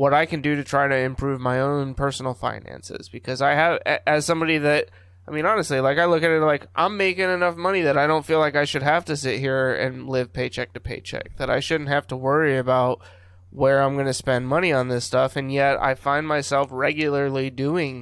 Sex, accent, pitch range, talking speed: male, American, 125-150 Hz, 235 wpm